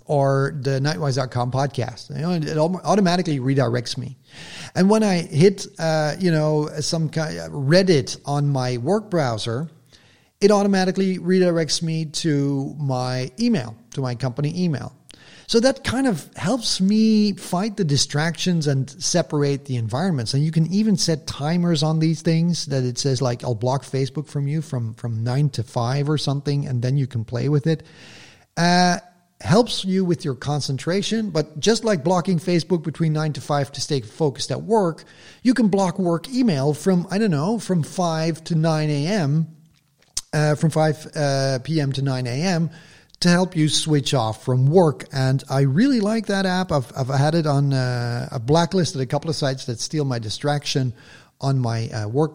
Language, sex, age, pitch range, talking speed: English, male, 40-59, 130-170 Hz, 180 wpm